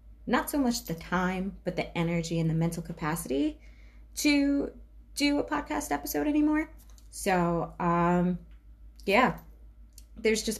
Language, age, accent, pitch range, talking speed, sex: English, 20-39, American, 165-195 Hz, 130 wpm, female